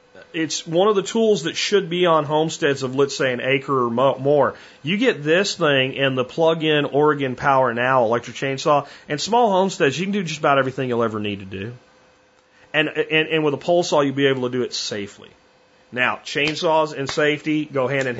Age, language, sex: 40-59, English, male